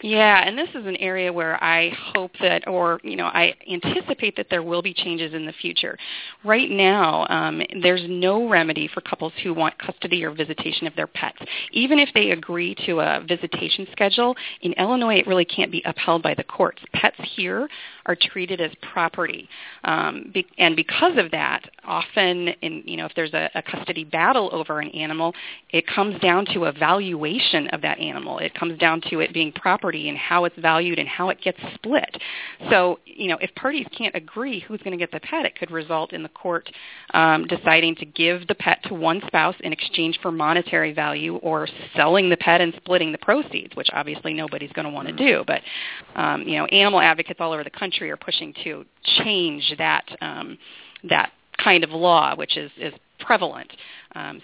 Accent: American